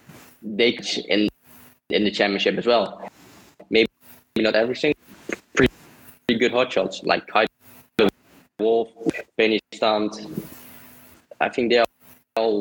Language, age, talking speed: English, 20-39, 120 wpm